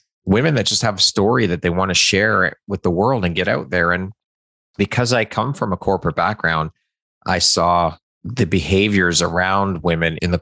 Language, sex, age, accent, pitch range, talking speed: English, male, 30-49, American, 85-100 Hz, 195 wpm